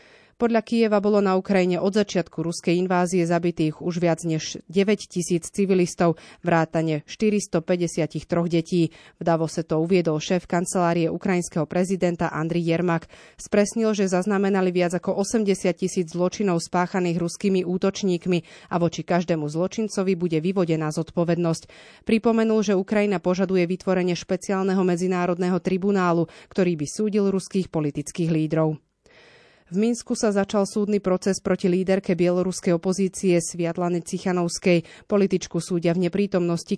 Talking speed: 125 wpm